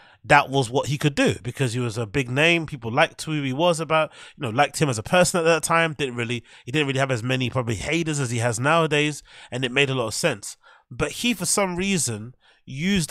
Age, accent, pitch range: 30-49, British, 120-155 Hz